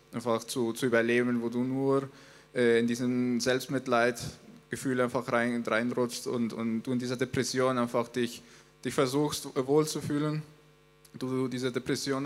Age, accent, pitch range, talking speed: 20-39, Austrian, 120-135 Hz, 140 wpm